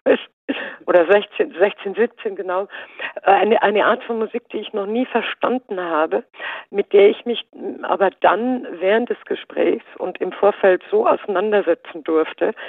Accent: German